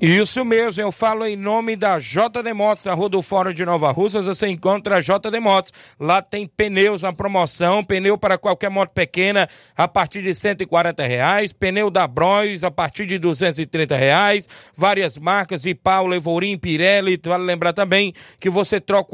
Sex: male